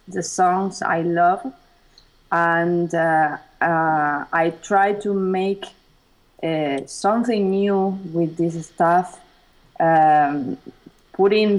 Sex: female